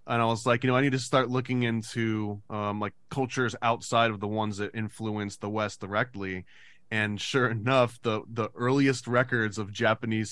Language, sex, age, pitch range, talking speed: English, male, 20-39, 105-120 Hz, 190 wpm